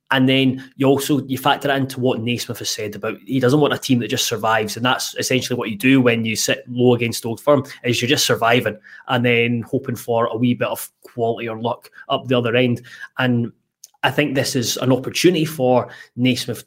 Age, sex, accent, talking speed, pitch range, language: 20-39, male, British, 220 wpm, 120-145 Hz, English